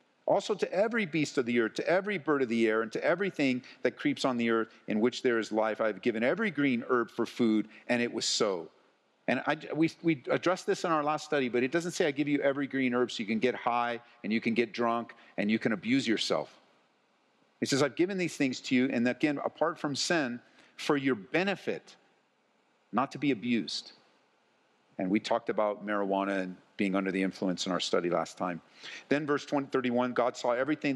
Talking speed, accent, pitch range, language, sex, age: 220 wpm, American, 110-140 Hz, English, male, 50-69